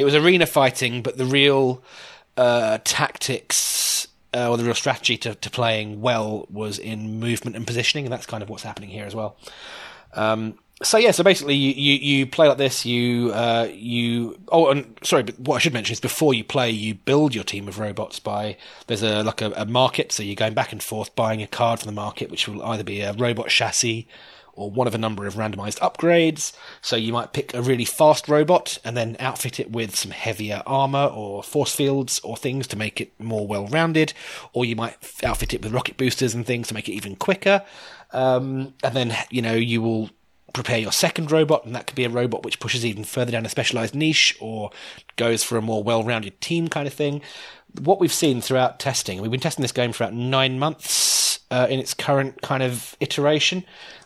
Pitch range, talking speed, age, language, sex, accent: 110-135 Hz, 215 wpm, 30-49, English, male, British